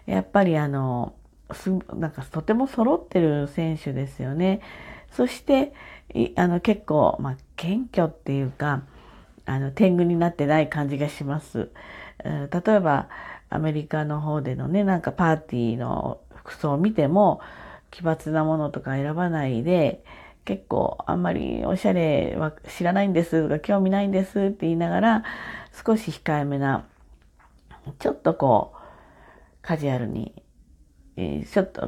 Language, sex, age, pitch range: Japanese, female, 40-59, 140-195 Hz